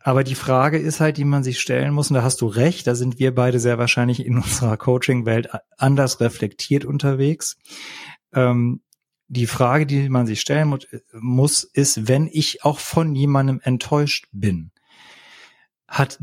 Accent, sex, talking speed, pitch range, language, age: German, male, 165 wpm, 120-145 Hz, German, 40-59